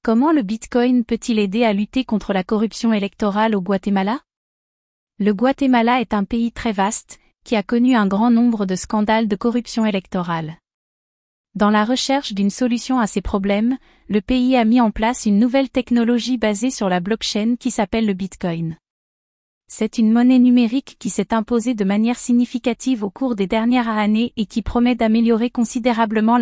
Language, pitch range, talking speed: French, 210-245 Hz, 175 wpm